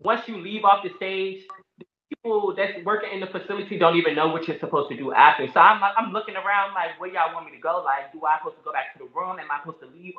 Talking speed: 295 wpm